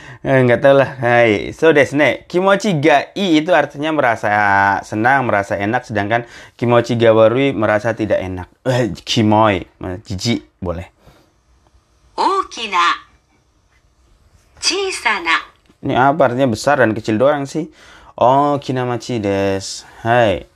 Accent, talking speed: native, 110 wpm